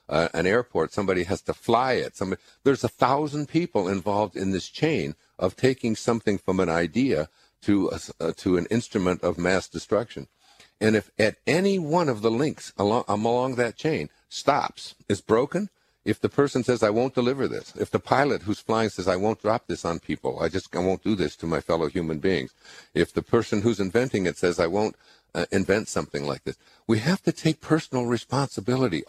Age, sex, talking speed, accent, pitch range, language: 50-69, male, 200 wpm, American, 90-120 Hz, English